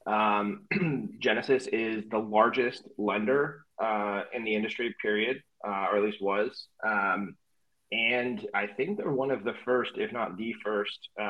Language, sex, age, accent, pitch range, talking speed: English, male, 20-39, American, 105-115 Hz, 155 wpm